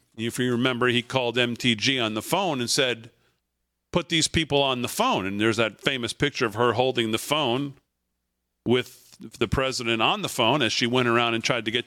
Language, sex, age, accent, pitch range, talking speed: English, male, 50-69, American, 115-155 Hz, 205 wpm